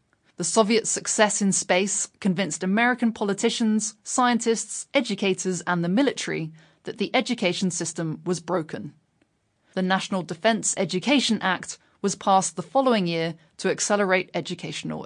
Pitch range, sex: 170-220 Hz, female